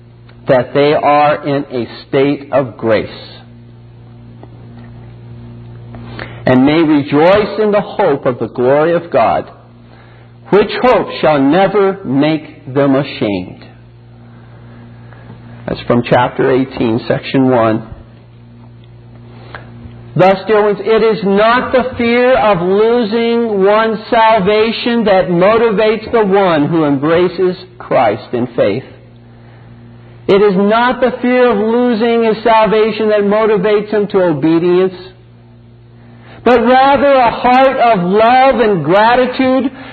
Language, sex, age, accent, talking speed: English, male, 50-69, American, 115 wpm